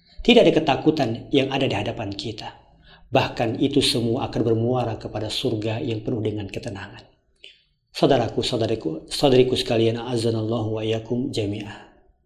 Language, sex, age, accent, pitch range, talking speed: Indonesian, male, 40-59, native, 110-130 Hz, 125 wpm